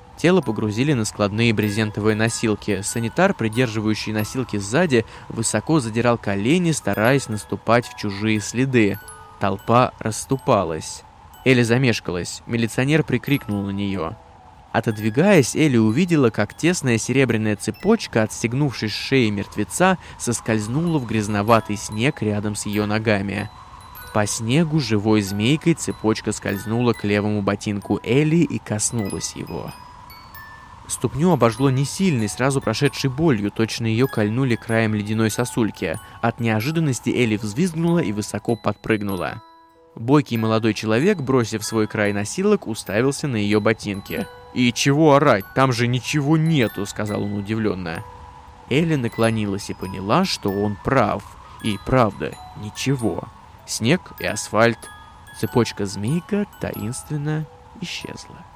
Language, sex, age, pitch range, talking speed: Russian, male, 20-39, 105-135 Hz, 120 wpm